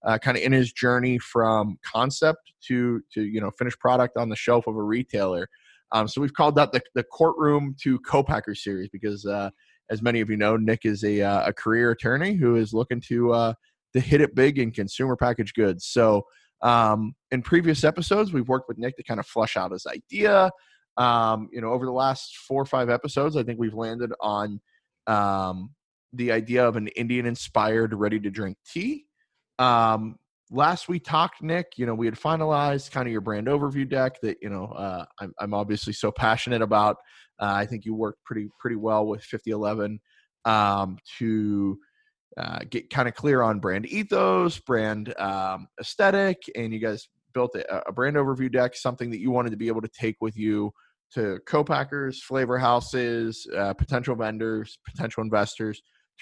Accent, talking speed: American, 190 wpm